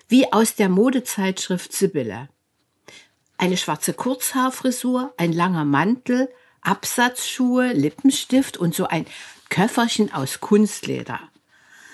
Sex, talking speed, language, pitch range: female, 95 wpm, German, 165-230 Hz